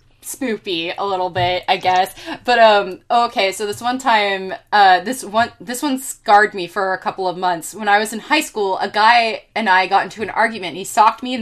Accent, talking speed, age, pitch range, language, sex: American, 230 wpm, 20-39, 190-235 Hz, English, female